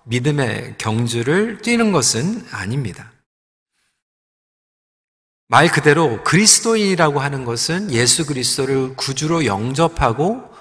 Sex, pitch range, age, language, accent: male, 125-190 Hz, 40-59, Korean, native